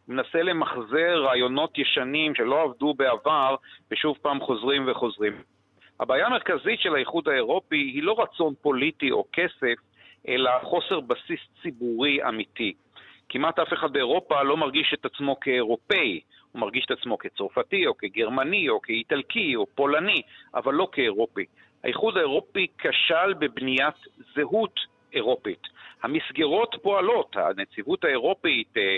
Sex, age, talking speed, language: male, 50-69, 125 wpm, Hebrew